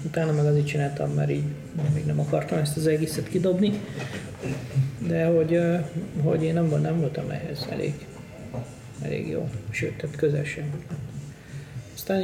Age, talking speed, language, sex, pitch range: 40-59, 130 wpm, Hungarian, male, 145-165 Hz